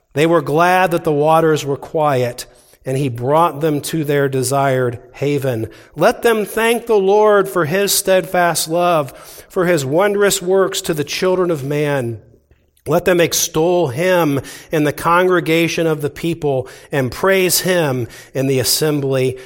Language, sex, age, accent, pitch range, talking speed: English, male, 40-59, American, 165-210 Hz, 155 wpm